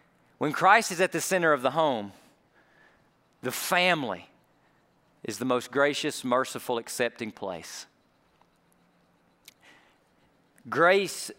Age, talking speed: 40-59, 100 wpm